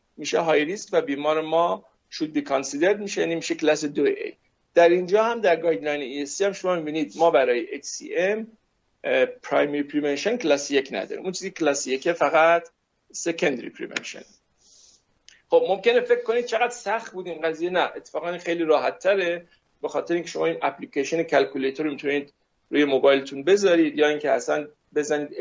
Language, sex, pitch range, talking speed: Persian, male, 150-200 Hz, 160 wpm